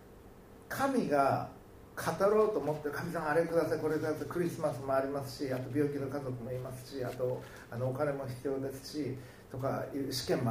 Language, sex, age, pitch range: Japanese, male, 60-79, 125-165 Hz